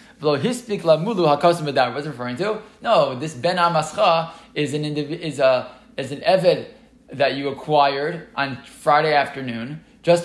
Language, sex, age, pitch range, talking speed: English, male, 20-39, 145-180 Hz, 135 wpm